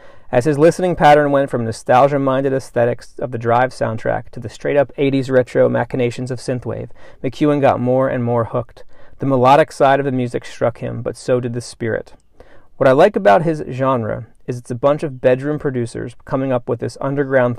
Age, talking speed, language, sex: 40-59, 195 wpm, English, male